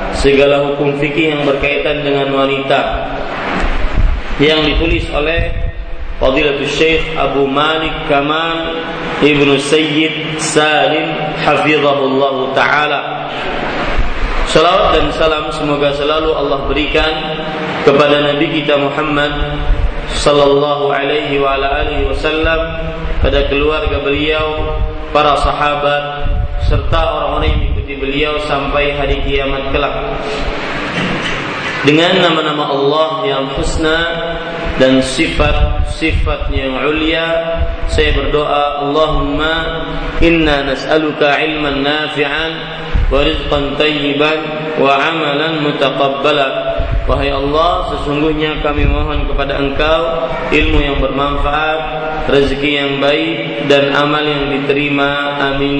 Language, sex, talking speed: Malay, male, 95 wpm